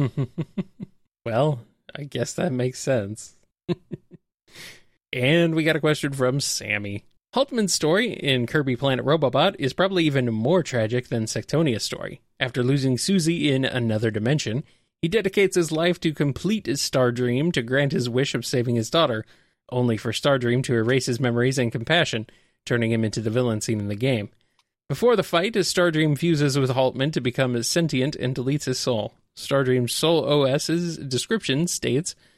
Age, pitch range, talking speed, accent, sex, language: 30-49, 125-165 Hz, 160 wpm, American, male, English